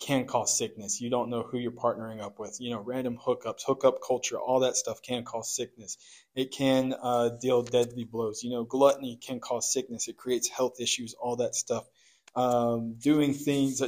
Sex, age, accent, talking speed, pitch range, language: male, 20-39, American, 195 wpm, 115-130 Hz, English